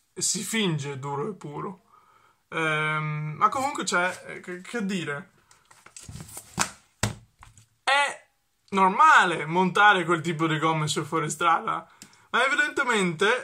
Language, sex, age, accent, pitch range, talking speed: Italian, male, 20-39, native, 170-215 Hz, 105 wpm